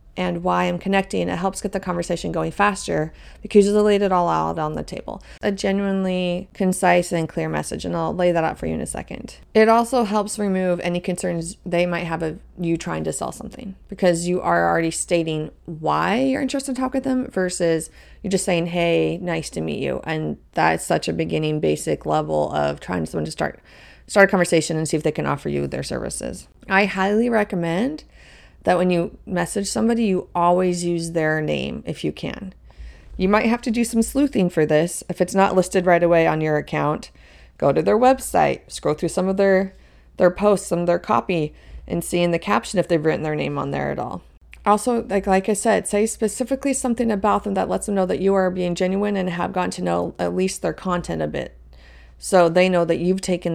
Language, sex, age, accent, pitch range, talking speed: English, female, 30-49, American, 165-205 Hz, 220 wpm